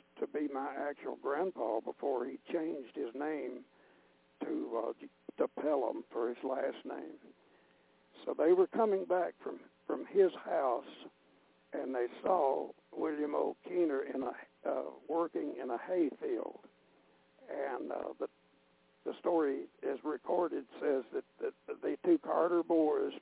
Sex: male